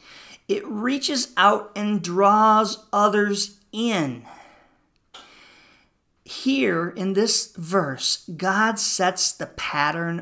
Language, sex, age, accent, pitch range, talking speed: English, male, 40-59, American, 180-240 Hz, 90 wpm